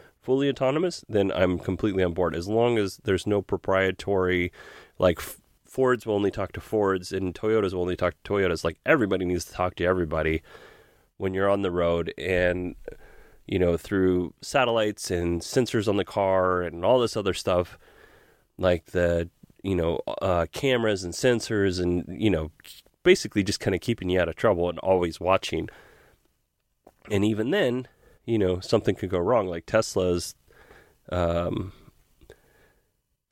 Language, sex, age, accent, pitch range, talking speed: English, male, 30-49, American, 90-100 Hz, 160 wpm